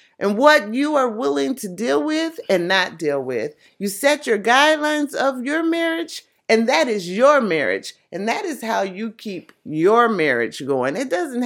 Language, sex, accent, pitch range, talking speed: English, female, American, 190-300 Hz, 185 wpm